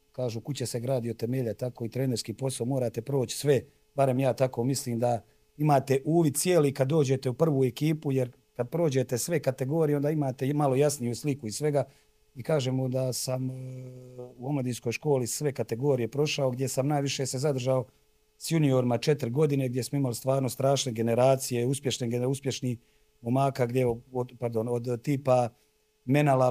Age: 40-59